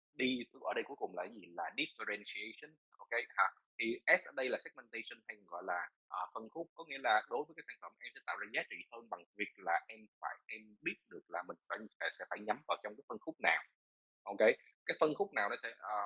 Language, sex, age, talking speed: Vietnamese, male, 20-39, 255 wpm